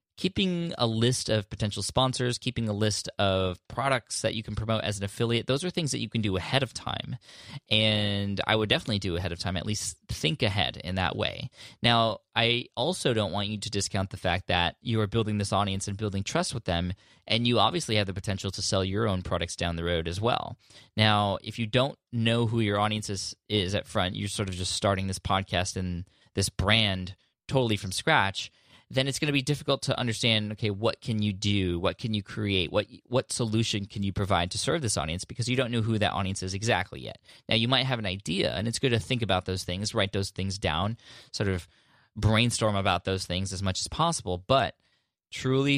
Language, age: English, 10-29